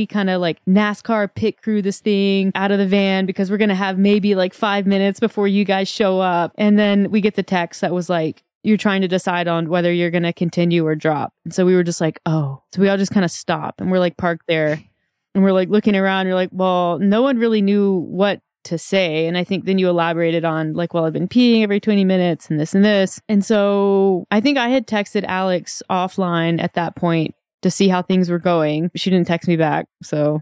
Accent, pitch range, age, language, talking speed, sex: American, 170-205 Hz, 20-39, English, 245 wpm, female